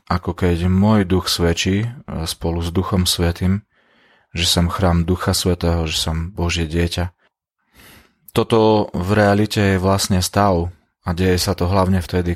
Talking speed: 145 wpm